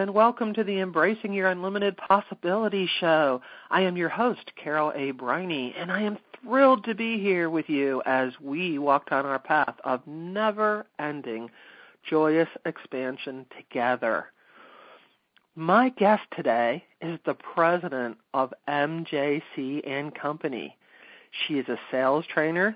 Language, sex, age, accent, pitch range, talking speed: English, male, 40-59, American, 135-180 Hz, 130 wpm